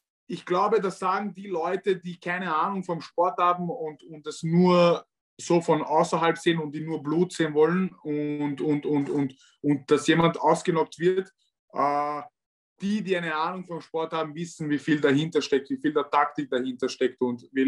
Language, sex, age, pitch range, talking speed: German, male, 20-39, 145-170 Hz, 190 wpm